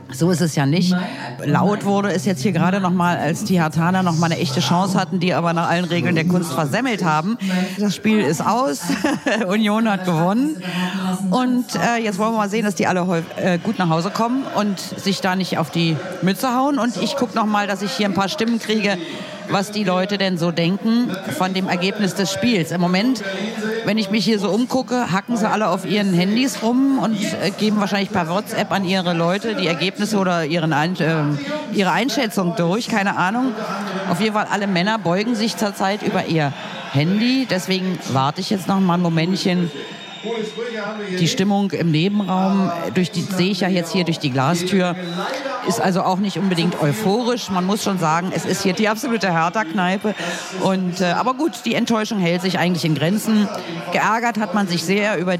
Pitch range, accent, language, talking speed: 175-215 Hz, German, German, 195 wpm